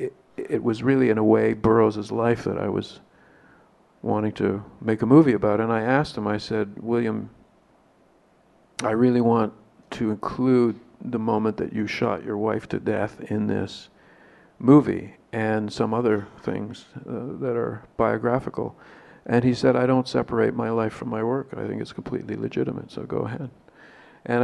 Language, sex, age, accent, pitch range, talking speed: English, male, 50-69, American, 110-120 Hz, 170 wpm